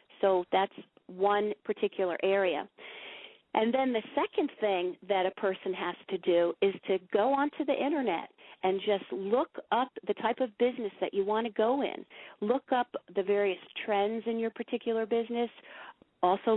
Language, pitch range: English, 190-225 Hz